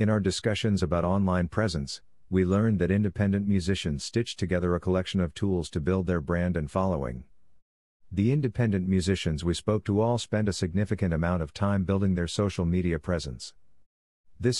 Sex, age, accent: male, 50-69, American